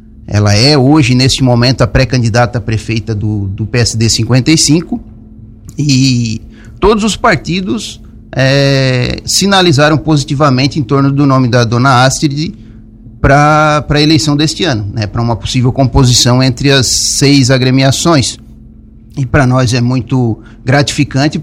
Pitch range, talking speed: 110-145 Hz, 125 wpm